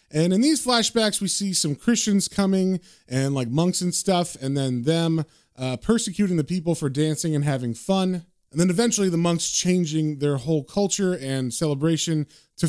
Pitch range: 125-170 Hz